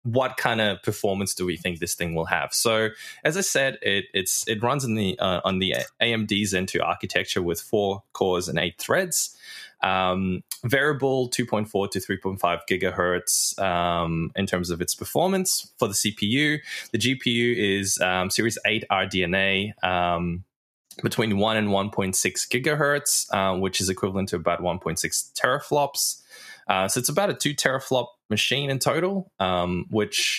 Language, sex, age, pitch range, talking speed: English, male, 20-39, 95-125 Hz, 180 wpm